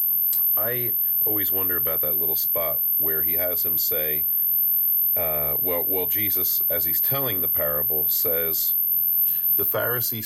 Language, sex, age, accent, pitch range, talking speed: English, male, 40-59, American, 80-125 Hz, 140 wpm